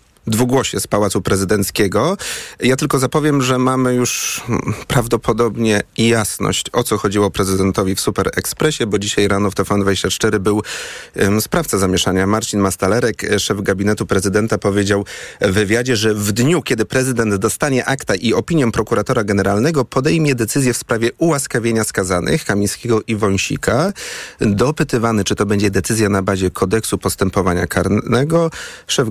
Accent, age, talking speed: native, 30-49, 140 wpm